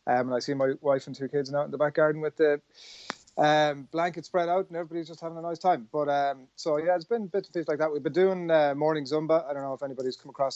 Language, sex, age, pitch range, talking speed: English, male, 30-49, 120-145 Hz, 290 wpm